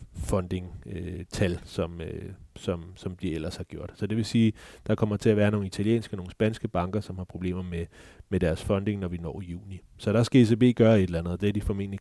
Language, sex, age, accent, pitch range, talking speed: Danish, male, 30-49, native, 90-110 Hz, 250 wpm